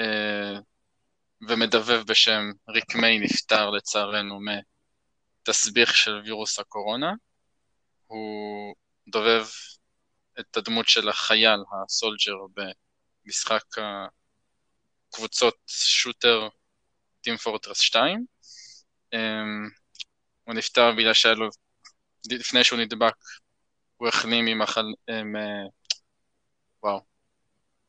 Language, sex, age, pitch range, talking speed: Hebrew, male, 20-39, 105-115 Hz, 75 wpm